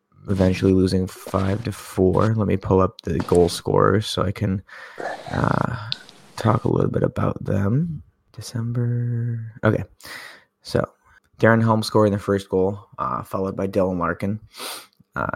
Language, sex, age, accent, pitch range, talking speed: English, male, 20-39, American, 95-110 Hz, 145 wpm